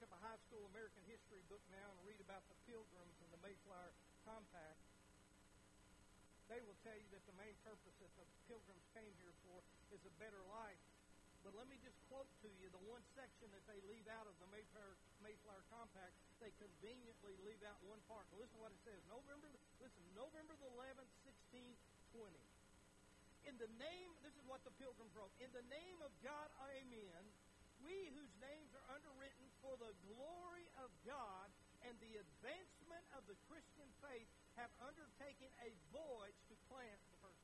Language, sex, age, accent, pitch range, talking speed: English, male, 60-79, American, 200-280 Hz, 180 wpm